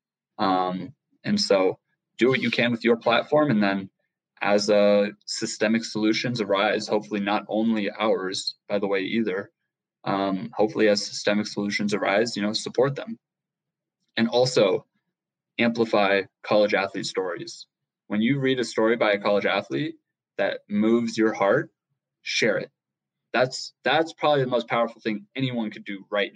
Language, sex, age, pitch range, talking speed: English, male, 20-39, 105-130 Hz, 155 wpm